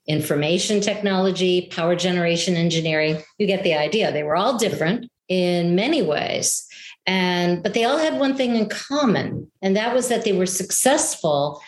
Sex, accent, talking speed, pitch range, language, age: female, American, 165 wpm, 180-225 Hz, English, 50-69